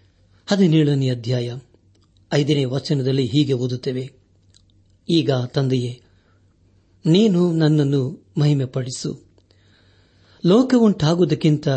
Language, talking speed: Kannada, 65 wpm